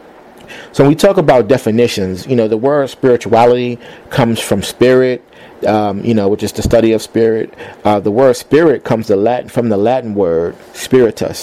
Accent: American